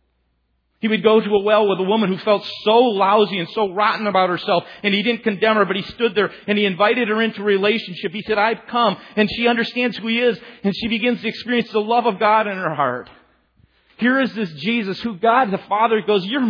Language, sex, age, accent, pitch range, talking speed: English, male, 40-59, American, 170-220 Hz, 240 wpm